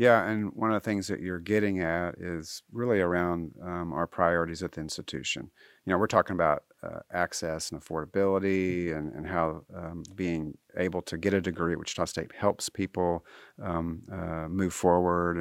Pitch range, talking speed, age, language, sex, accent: 85-100 Hz, 185 wpm, 40-59, English, male, American